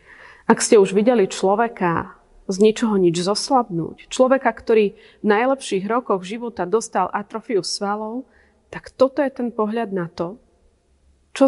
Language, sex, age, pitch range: Slovak, female, 30-49, 185-225 Hz